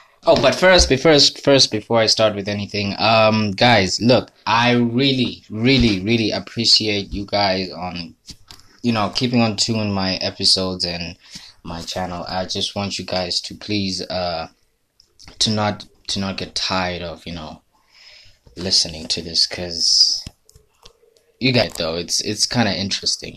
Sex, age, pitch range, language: male, 20-39, 90-115 Hz, English